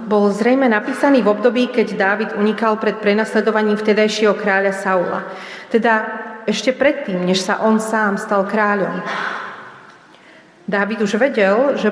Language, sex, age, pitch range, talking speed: Slovak, female, 40-59, 195-230 Hz, 130 wpm